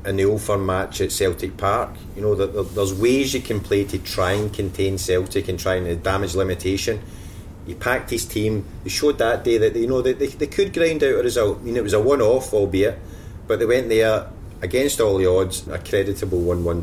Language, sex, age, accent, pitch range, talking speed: English, male, 30-49, British, 90-105 Hz, 225 wpm